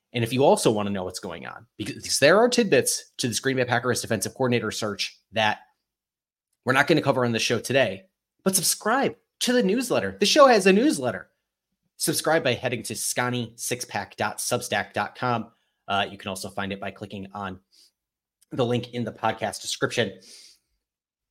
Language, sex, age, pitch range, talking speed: English, male, 30-49, 105-140 Hz, 175 wpm